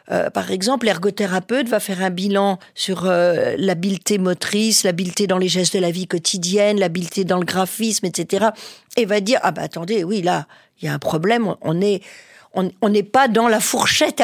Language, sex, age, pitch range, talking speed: French, female, 50-69, 185-245 Hz, 200 wpm